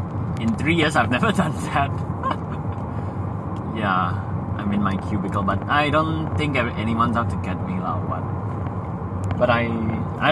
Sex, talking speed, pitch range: male, 150 wpm, 95-115 Hz